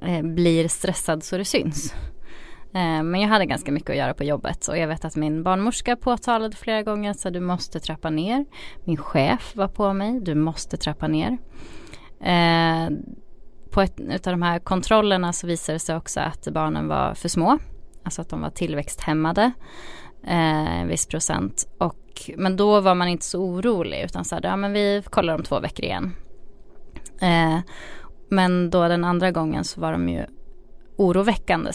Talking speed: 165 wpm